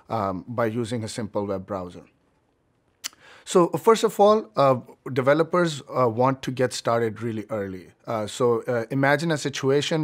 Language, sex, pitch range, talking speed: English, male, 115-140 Hz, 155 wpm